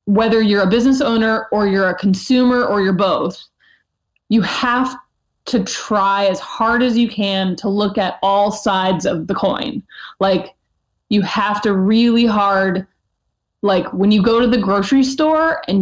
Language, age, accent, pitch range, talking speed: English, 20-39, American, 195-250 Hz, 165 wpm